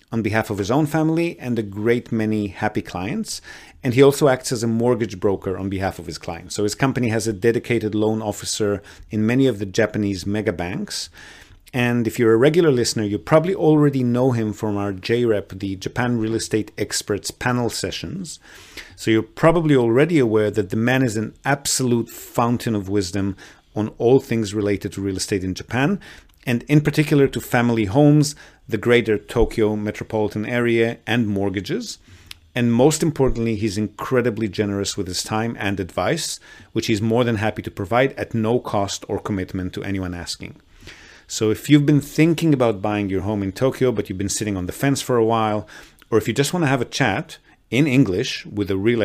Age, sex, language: 40-59, male, English